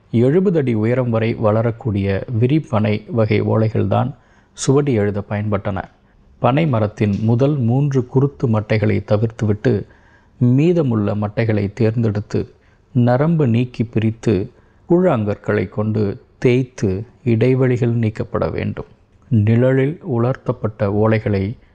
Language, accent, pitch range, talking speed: Tamil, native, 105-120 Hz, 95 wpm